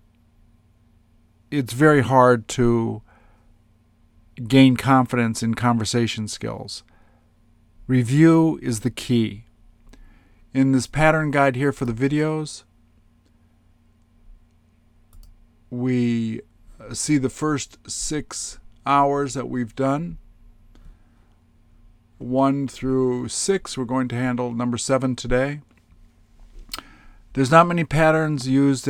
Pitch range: 100-130 Hz